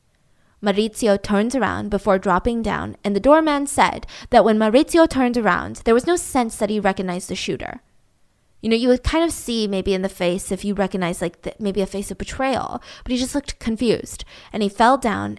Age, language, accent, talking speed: 20-39, English, American, 210 wpm